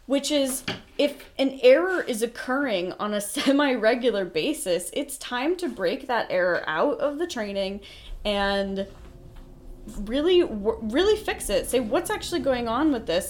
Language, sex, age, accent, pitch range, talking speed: English, female, 20-39, American, 190-250 Hz, 150 wpm